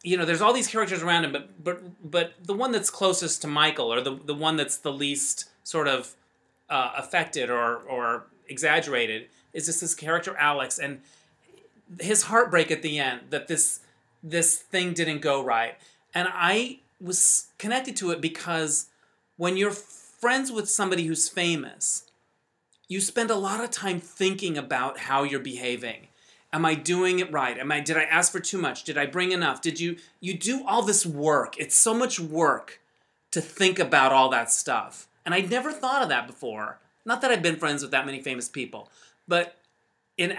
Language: English